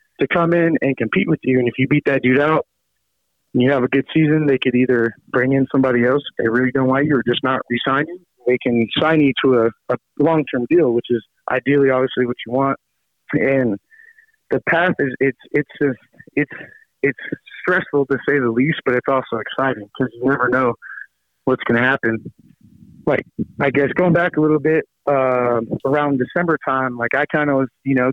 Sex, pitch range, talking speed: male, 125-145 Hz, 210 wpm